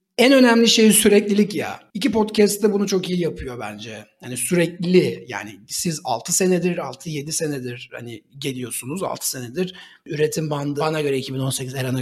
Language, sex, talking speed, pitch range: Turkish, male, 155 wpm, 155-220 Hz